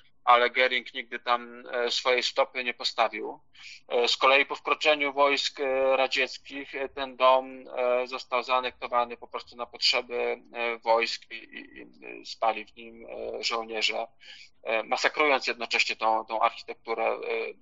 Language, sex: Polish, male